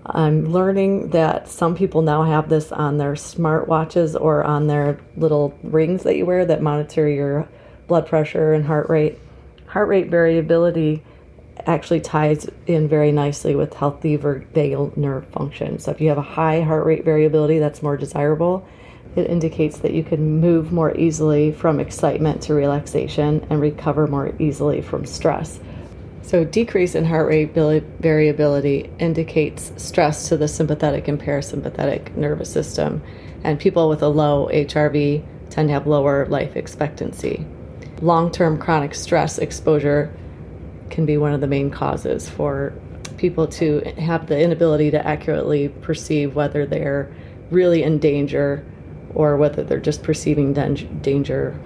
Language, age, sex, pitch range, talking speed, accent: English, 30-49, female, 145-160 Hz, 150 wpm, American